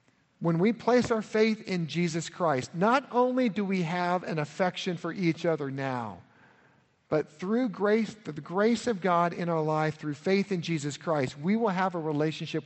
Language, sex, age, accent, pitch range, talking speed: English, male, 50-69, American, 145-190 Hz, 185 wpm